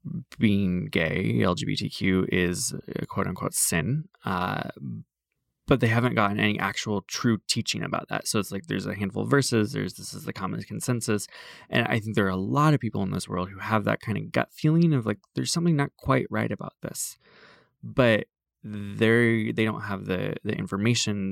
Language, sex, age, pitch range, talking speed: English, male, 20-39, 95-135 Hz, 195 wpm